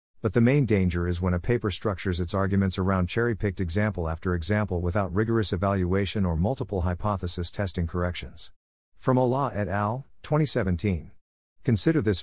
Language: English